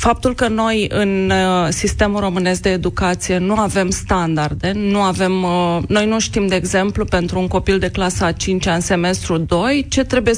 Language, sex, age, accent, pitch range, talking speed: Romanian, female, 20-39, native, 175-215 Hz, 180 wpm